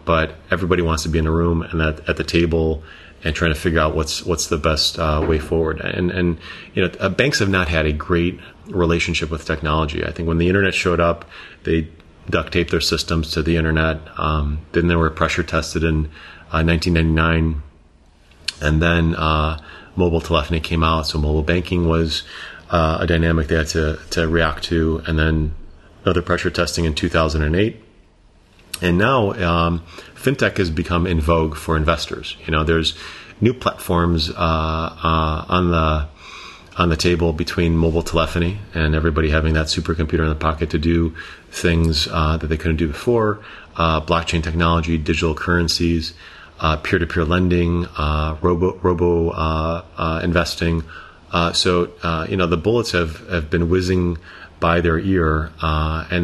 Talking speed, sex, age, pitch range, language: 175 wpm, male, 30-49, 80-85 Hz, English